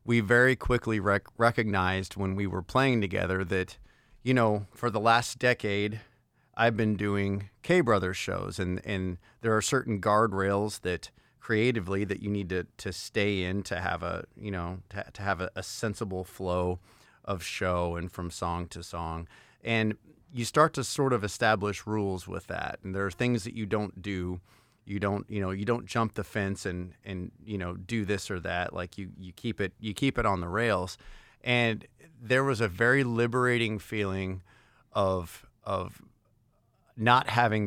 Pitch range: 95-115 Hz